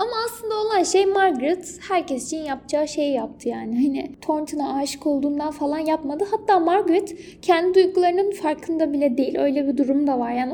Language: Turkish